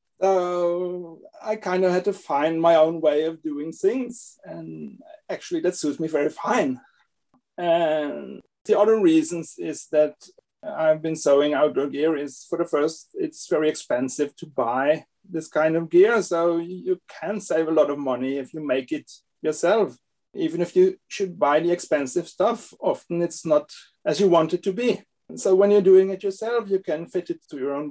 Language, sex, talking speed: English, male, 190 wpm